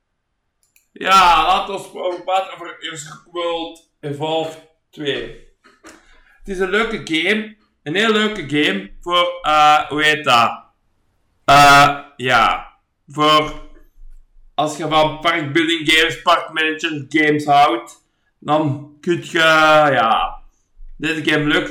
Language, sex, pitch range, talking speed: Dutch, male, 150-195 Hz, 115 wpm